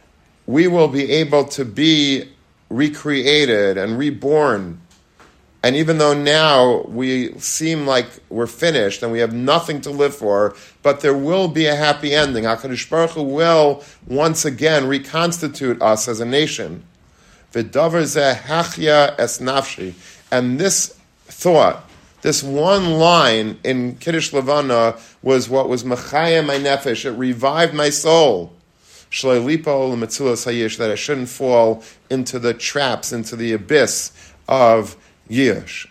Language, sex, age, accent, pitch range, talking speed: English, male, 40-59, American, 115-145 Hz, 130 wpm